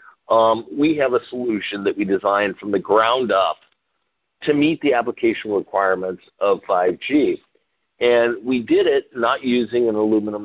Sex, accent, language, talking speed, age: male, American, English, 155 wpm, 50-69